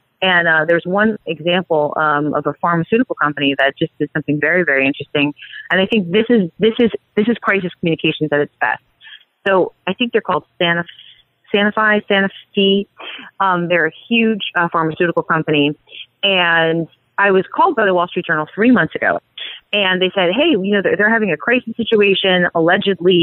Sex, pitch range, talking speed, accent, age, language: female, 155-210 Hz, 180 wpm, American, 30-49, English